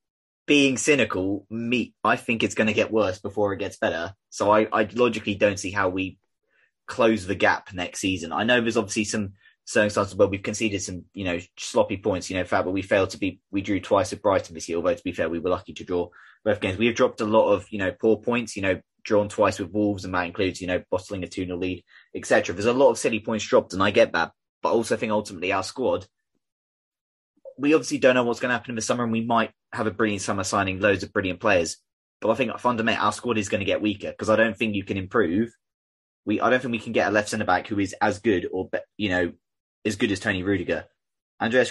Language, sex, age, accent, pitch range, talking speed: English, male, 20-39, British, 95-115 Hz, 255 wpm